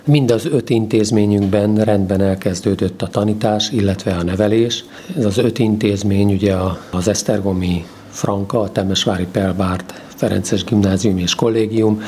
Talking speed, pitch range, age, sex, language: 130 wpm, 95-110 Hz, 50-69, male, Hungarian